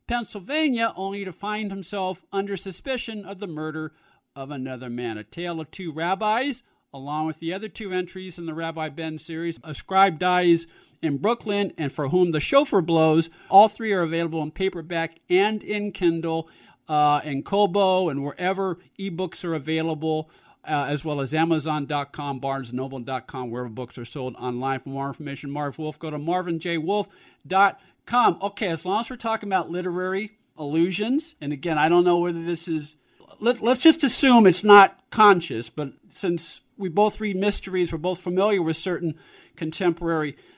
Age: 50-69